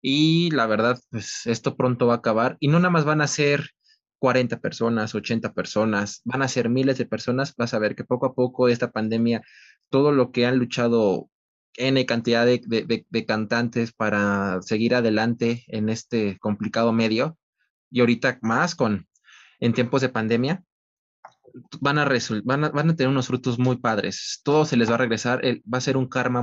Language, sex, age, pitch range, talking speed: Spanish, male, 20-39, 110-130 Hz, 195 wpm